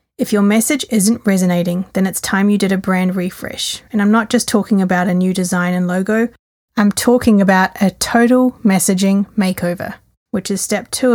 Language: English